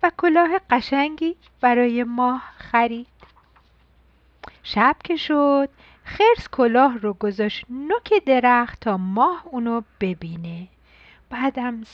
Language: Persian